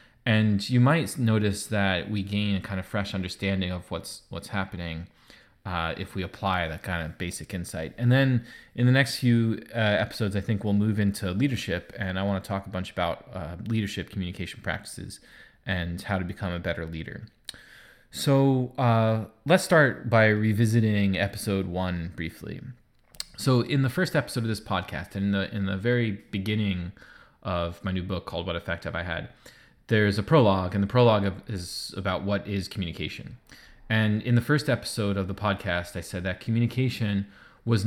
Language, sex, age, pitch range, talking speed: English, male, 20-39, 95-115 Hz, 185 wpm